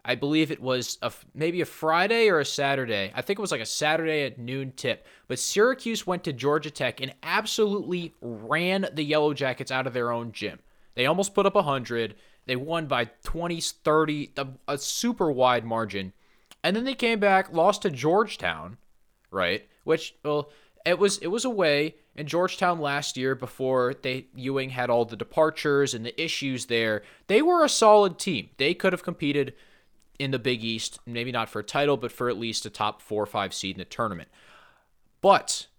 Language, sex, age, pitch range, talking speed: English, male, 20-39, 125-180 Hz, 195 wpm